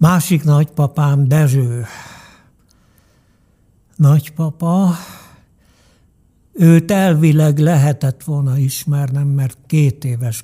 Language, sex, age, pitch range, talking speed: Hungarian, male, 60-79, 125-155 Hz, 70 wpm